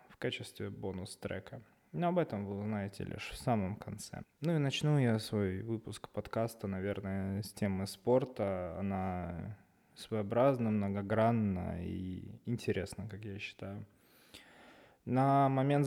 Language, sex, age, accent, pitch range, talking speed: Russian, male, 20-39, native, 100-125 Hz, 125 wpm